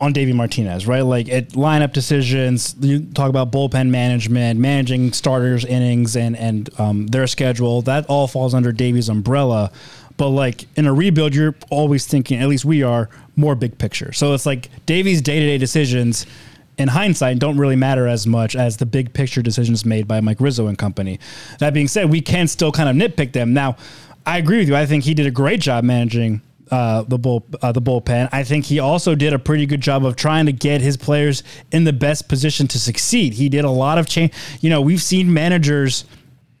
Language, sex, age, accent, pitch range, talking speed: English, male, 20-39, American, 125-155 Hz, 210 wpm